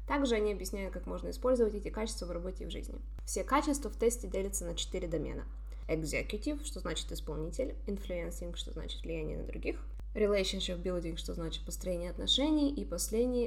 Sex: female